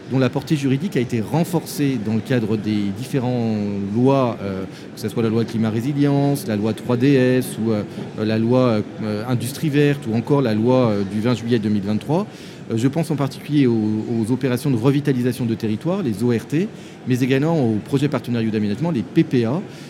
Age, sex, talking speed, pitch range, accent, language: 30-49, male, 170 wpm, 110-145 Hz, French, French